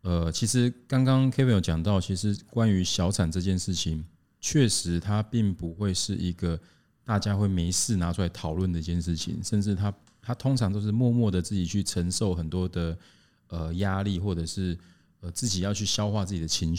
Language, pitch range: Chinese, 85-110 Hz